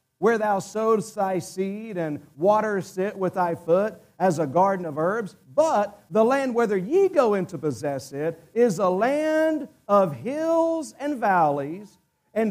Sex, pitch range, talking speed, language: male, 175-255 Hz, 165 wpm, English